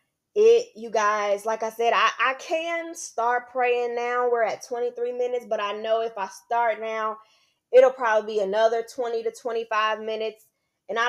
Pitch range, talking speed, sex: 200-245 Hz, 180 wpm, female